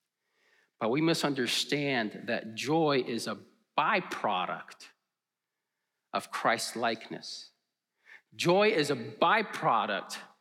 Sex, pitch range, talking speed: male, 180-260 Hz, 90 wpm